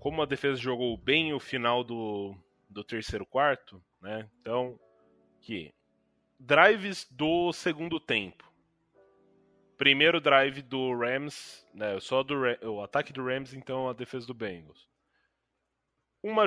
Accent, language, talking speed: Brazilian, Portuguese, 130 wpm